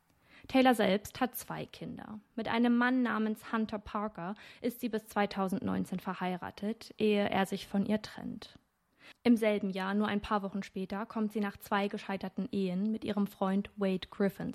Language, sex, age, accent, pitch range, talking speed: German, female, 20-39, German, 195-220 Hz, 170 wpm